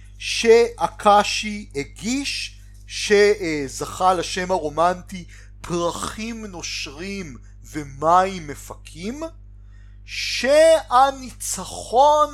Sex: male